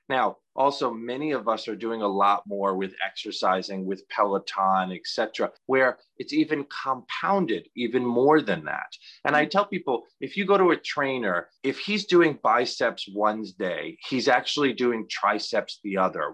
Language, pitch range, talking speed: English, 110-145 Hz, 170 wpm